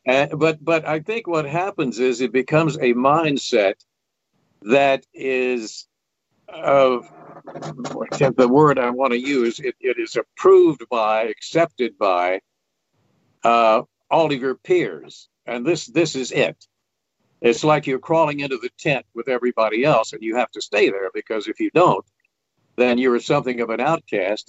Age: 60-79